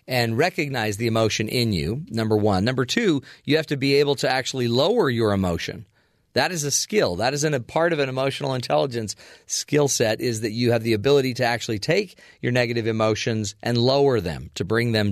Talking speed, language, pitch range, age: 205 wpm, English, 110-140 Hz, 40-59